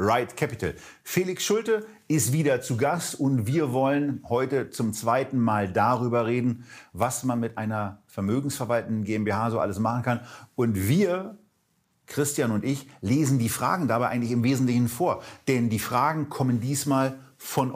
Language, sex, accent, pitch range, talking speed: German, male, German, 110-135 Hz, 155 wpm